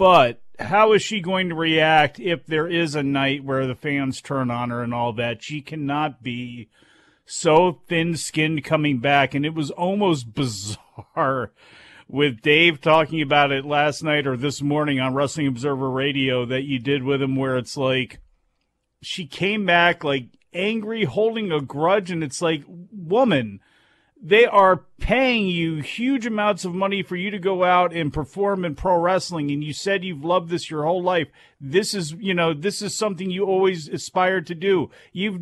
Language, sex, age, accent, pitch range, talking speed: English, male, 40-59, American, 145-200 Hz, 185 wpm